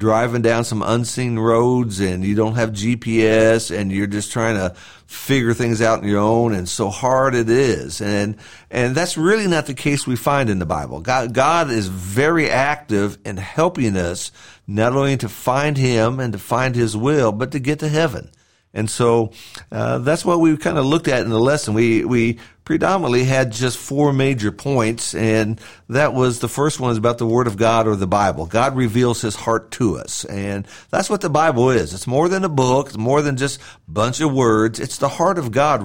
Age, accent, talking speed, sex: 50-69, American, 215 wpm, male